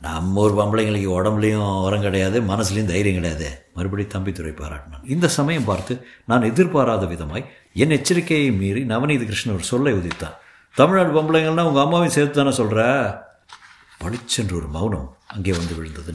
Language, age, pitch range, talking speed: Tamil, 60-79, 95-135 Hz, 145 wpm